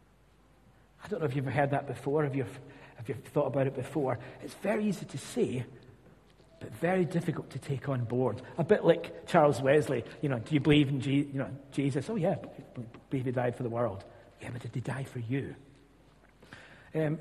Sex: male